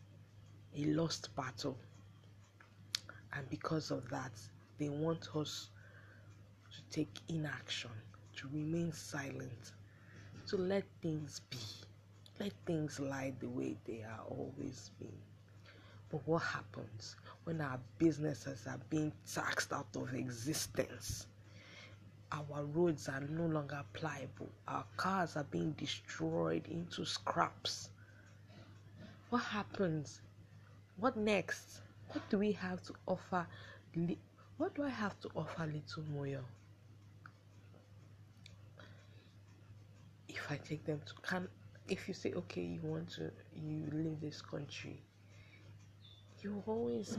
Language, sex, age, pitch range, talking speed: English, female, 20-39, 105-150 Hz, 115 wpm